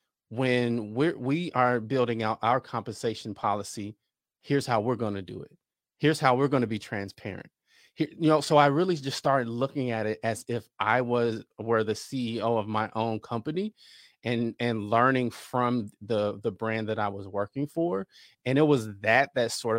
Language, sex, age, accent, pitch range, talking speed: English, male, 30-49, American, 110-135 Hz, 190 wpm